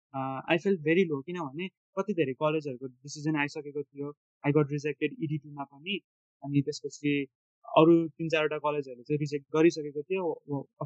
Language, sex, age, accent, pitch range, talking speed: English, male, 20-39, Indian, 145-175 Hz, 105 wpm